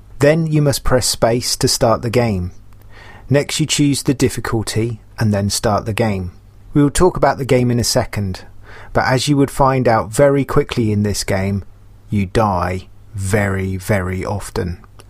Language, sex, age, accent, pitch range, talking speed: English, male, 30-49, British, 100-130 Hz, 175 wpm